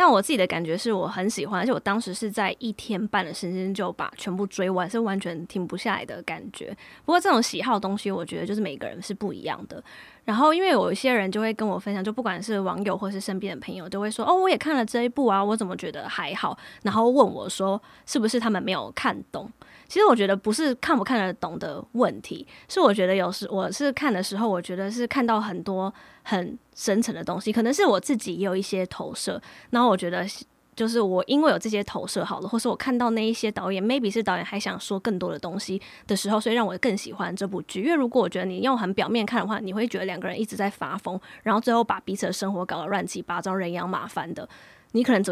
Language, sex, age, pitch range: Chinese, female, 20-39, 190-230 Hz